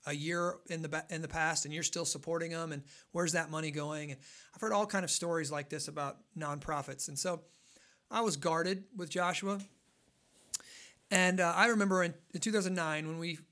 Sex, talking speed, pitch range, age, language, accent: male, 185 wpm, 155-185 Hz, 40-59, English, American